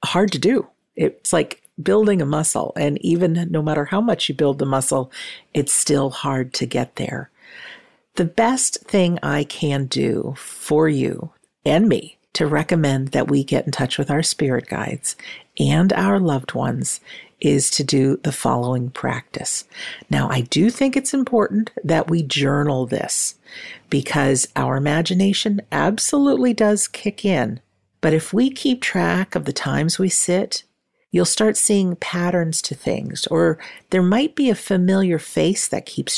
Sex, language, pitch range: female, English, 140-200 Hz